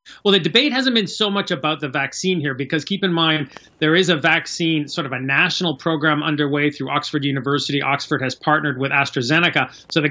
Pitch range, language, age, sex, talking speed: 135-160 Hz, English, 30-49, male, 210 wpm